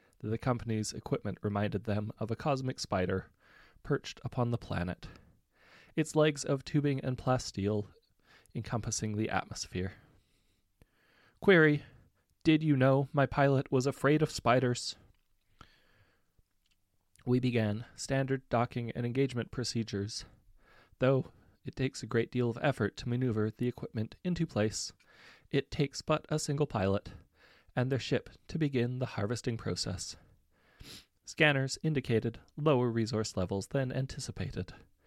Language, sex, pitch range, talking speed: English, male, 105-135 Hz, 125 wpm